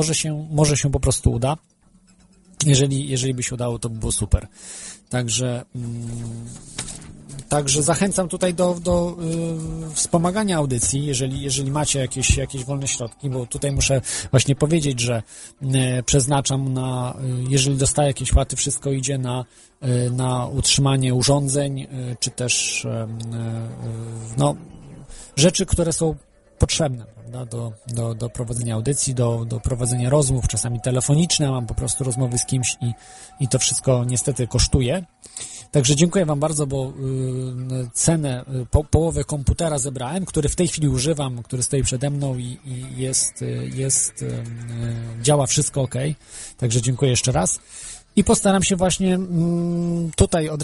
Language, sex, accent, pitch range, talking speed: Polish, male, native, 125-150 Hz, 140 wpm